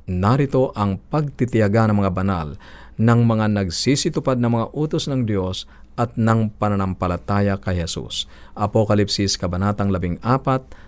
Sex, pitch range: male, 95-120 Hz